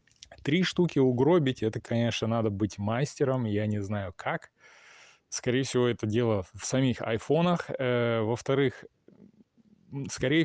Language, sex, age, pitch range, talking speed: Russian, male, 20-39, 105-130 Hz, 120 wpm